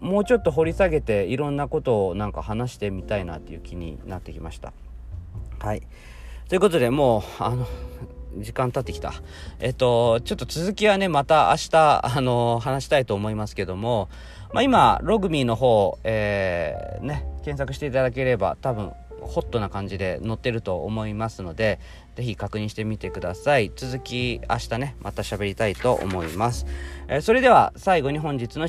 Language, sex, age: Japanese, male, 40-59